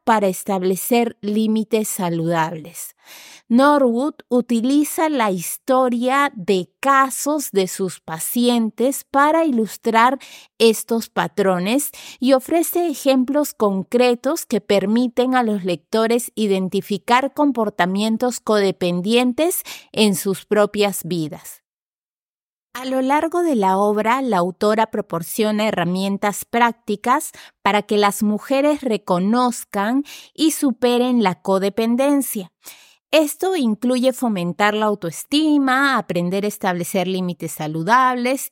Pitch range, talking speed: 200-270 Hz, 100 wpm